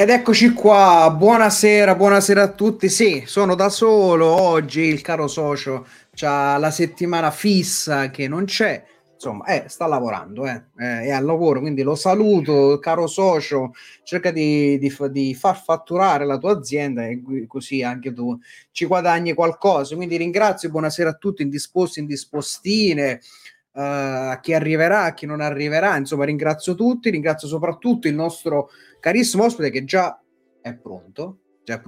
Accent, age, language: native, 30-49, Italian